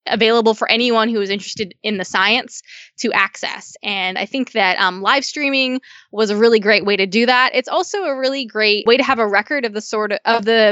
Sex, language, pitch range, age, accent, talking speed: female, English, 210-260 Hz, 20-39, American, 235 wpm